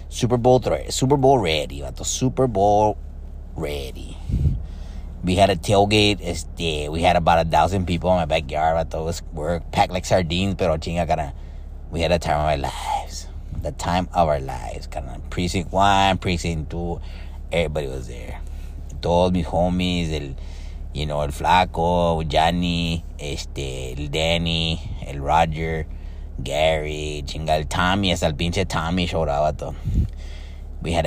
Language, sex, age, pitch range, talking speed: English, male, 30-49, 70-85 Hz, 145 wpm